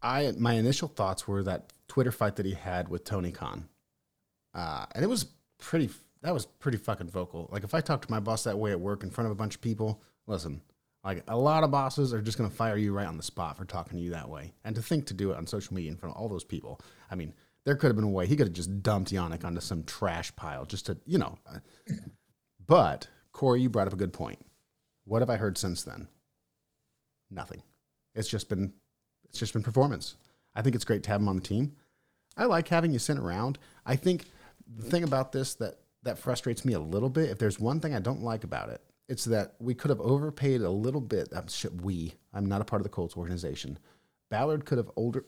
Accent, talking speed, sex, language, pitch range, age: American, 245 wpm, male, English, 95-125 Hz, 30-49